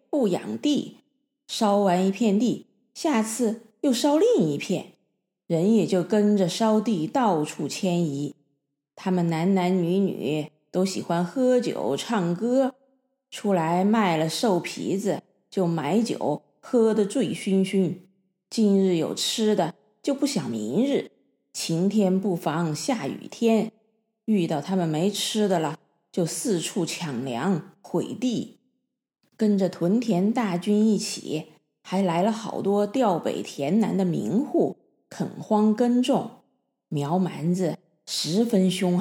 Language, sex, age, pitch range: Chinese, female, 30-49, 175-225 Hz